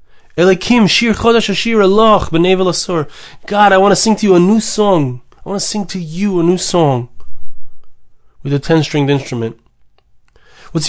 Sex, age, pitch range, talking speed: male, 20-39, 135-195 Hz, 130 wpm